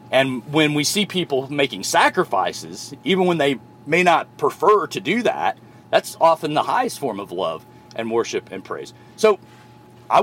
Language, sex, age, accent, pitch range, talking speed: English, male, 40-59, American, 130-175 Hz, 170 wpm